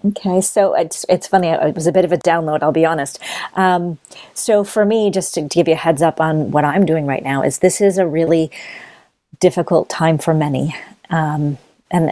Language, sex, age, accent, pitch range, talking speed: English, female, 40-59, American, 150-170 Hz, 220 wpm